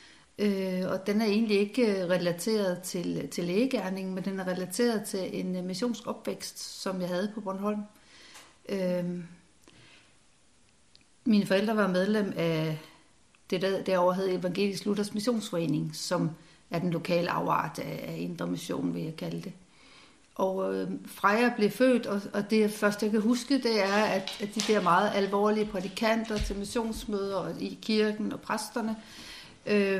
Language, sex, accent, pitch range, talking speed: Danish, female, native, 185-220 Hz, 150 wpm